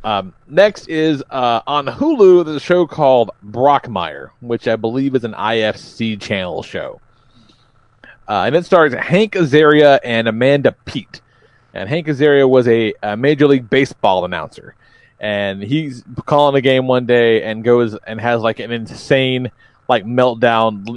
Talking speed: 155 wpm